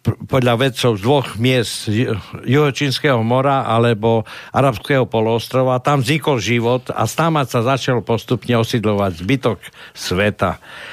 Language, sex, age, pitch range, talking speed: Slovak, male, 60-79, 115-140 Hz, 115 wpm